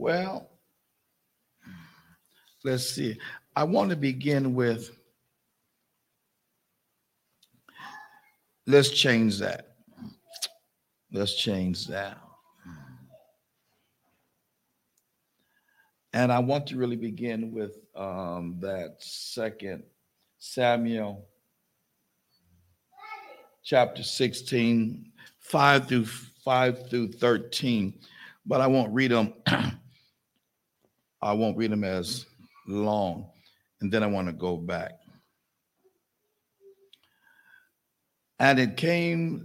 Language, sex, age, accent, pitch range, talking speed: English, male, 60-79, American, 100-135 Hz, 80 wpm